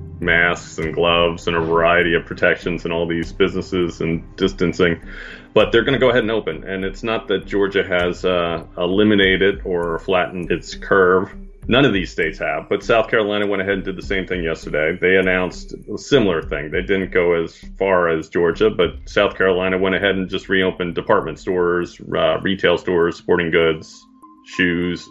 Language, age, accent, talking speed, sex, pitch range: English, 30-49, American, 185 wpm, male, 85-100 Hz